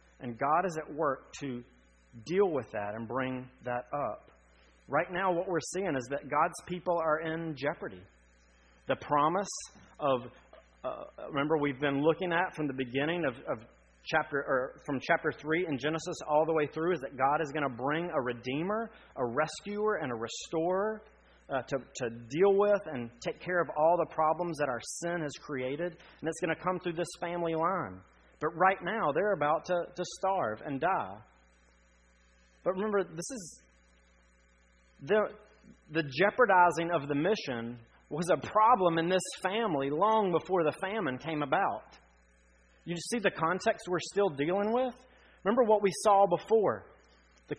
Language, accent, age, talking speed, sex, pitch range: English, American, 30-49, 170 wpm, male, 120-180 Hz